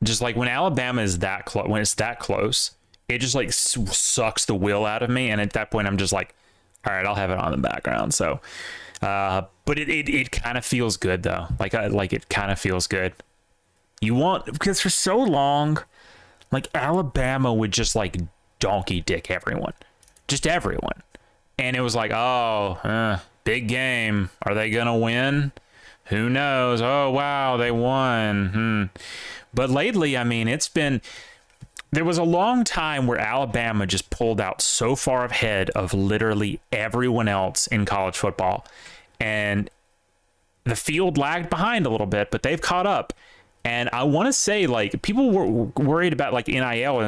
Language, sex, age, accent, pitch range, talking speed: English, male, 20-39, American, 105-145 Hz, 180 wpm